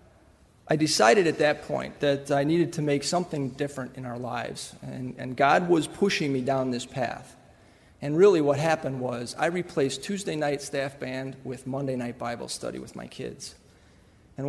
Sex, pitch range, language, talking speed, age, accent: male, 135-165 Hz, English, 180 wpm, 40-59, American